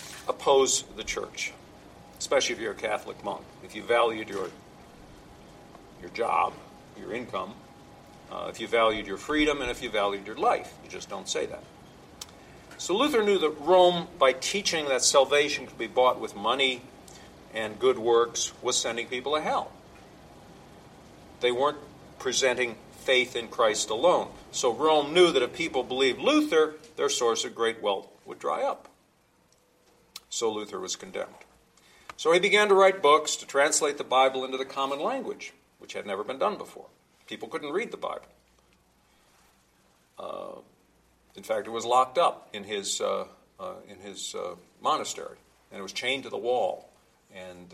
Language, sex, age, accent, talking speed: English, male, 50-69, American, 160 wpm